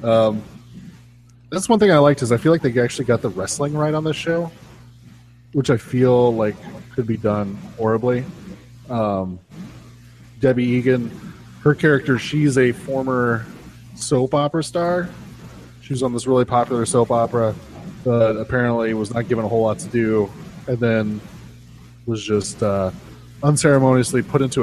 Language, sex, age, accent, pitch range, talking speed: English, male, 20-39, American, 110-135 Hz, 155 wpm